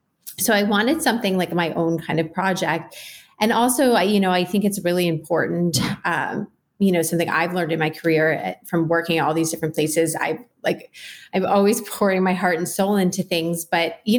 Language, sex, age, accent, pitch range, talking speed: English, female, 30-49, American, 165-195 Hz, 205 wpm